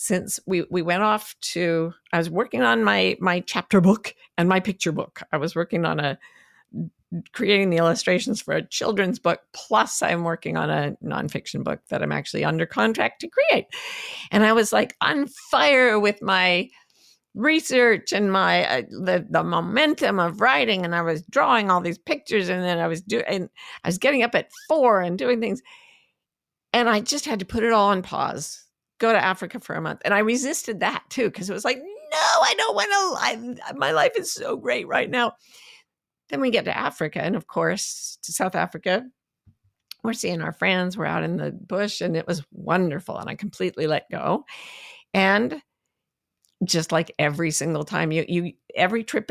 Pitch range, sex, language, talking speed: 170-235 Hz, female, English, 190 wpm